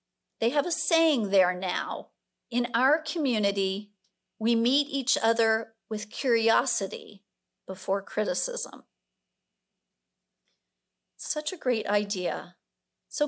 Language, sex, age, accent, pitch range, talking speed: English, female, 50-69, American, 215-285 Hz, 100 wpm